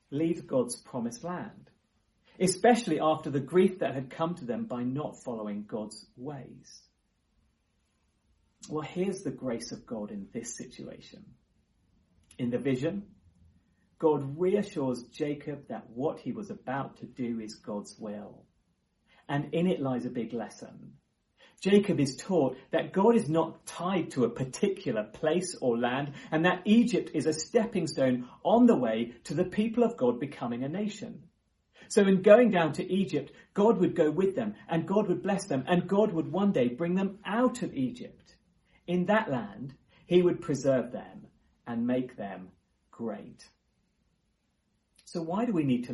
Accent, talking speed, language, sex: British, 165 wpm, English, male